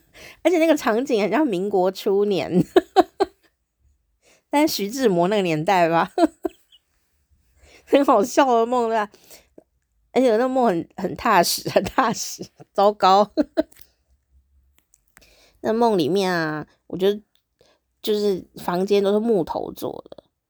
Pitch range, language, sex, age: 165-230 Hz, Chinese, female, 20-39